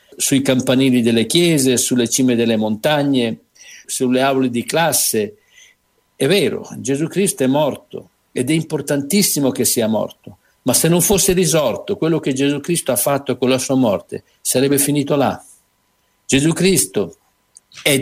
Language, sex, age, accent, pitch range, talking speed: Italian, male, 60-79, native, 135-175 Hz, 150 wpm